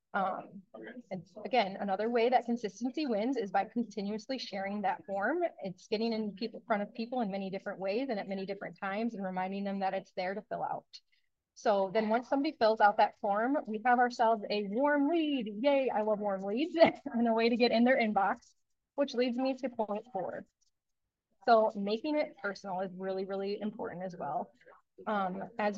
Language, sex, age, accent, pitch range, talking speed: English, female, 20-39, American, 195-240 Hz, 195 wpm